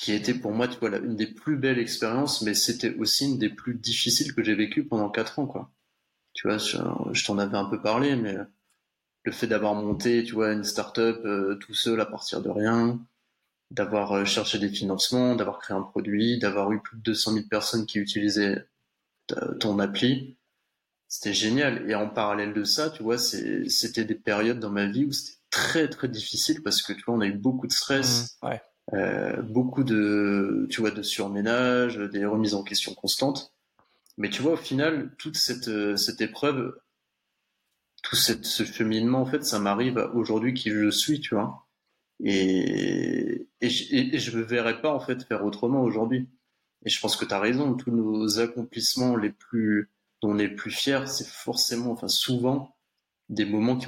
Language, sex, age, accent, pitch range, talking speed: French, male, 20-39, French, 105-125 Hz, 190 wpm